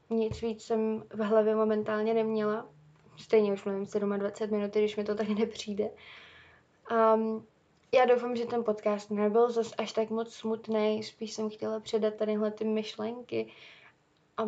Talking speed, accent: 150 wpm, native